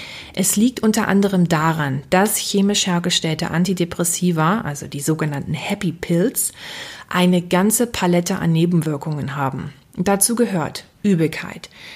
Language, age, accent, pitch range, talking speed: German, 30-49, German, 160-195 Hz, 115 wpm